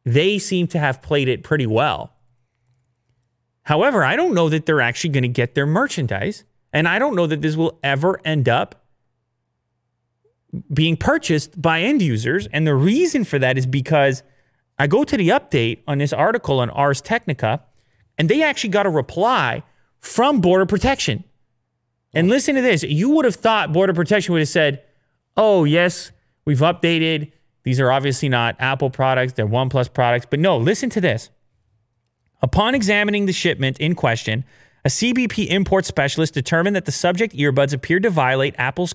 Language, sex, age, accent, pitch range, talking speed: English, male, 30-49, American, 125-180 Hz, 175 wpm